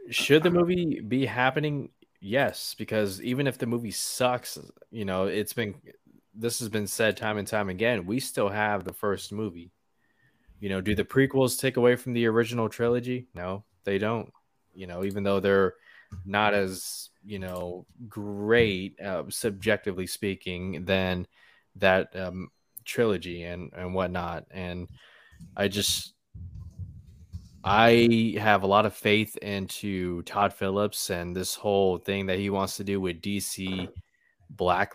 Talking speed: 150 wpm